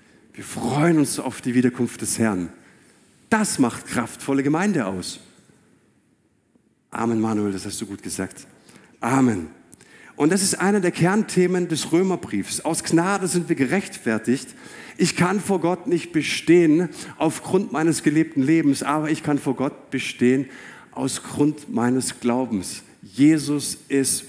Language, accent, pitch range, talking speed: German, German, 135-180 Hz, 135 wpm